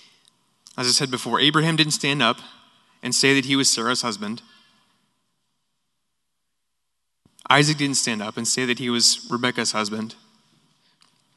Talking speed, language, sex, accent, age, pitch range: 135 wpm, English, male, American, 20-39, 120-150 Hz